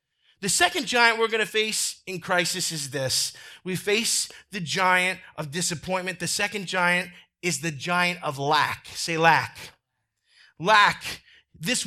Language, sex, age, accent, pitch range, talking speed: English, male, 30-49, American, 180-265 Hz, 145 wpm